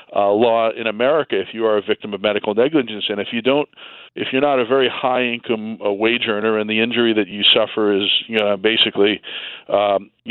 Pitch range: 105-115 Hz